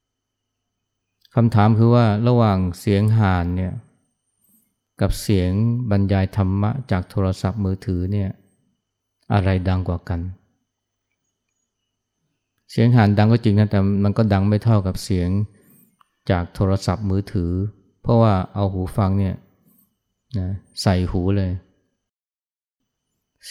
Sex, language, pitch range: male, Thai, 95-110 Hz